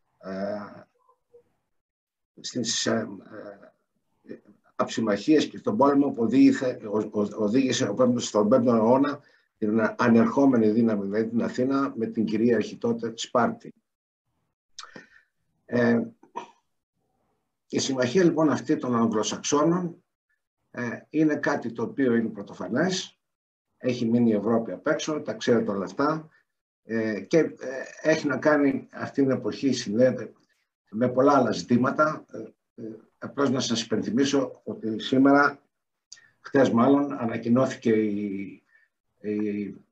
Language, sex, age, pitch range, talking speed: Greek, male, 60-79, 110-140 Hz, 105 wpm